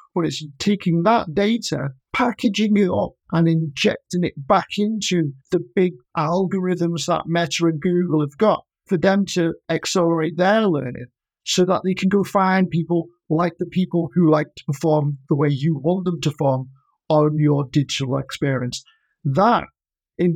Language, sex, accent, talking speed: English, male, British, 160 wpm